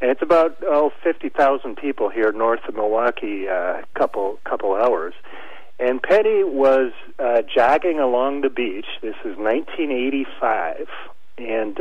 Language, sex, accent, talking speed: English, male, American, 135 wpm